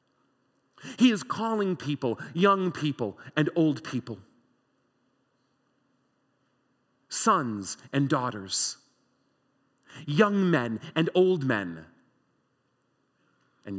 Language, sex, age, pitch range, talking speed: English, male, 40-59, 115-185 Hz, 80 wpm